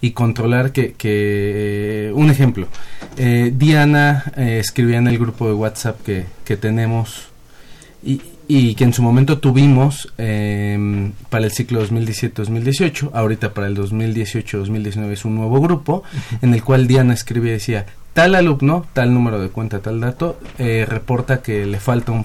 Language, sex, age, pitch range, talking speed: Spanish, male, 30-49, 105-130 Hz, 160 wpm